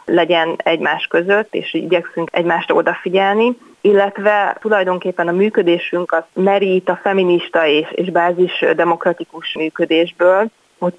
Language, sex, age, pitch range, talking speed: Hungarian, female, 20-39, 165-195 Hz, 115 wpm